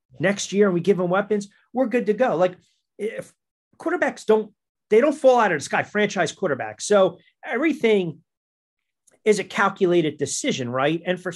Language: English